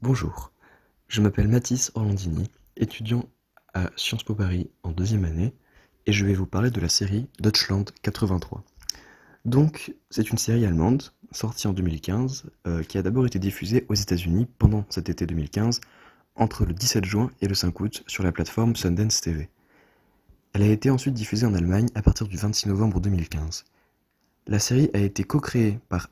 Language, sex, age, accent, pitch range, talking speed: French, male, 20-39, French, 90-115 Hz, 175 wpm